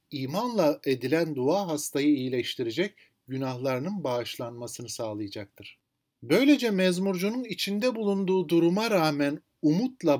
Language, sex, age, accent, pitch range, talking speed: Turkish, male, 50-69, native, 135-200 Hz, 90 wpm